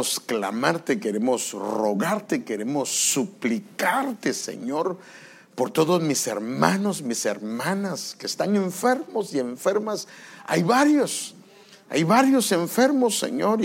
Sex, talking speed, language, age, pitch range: male, 100 wpm, English, 50-69, 145-240 Hz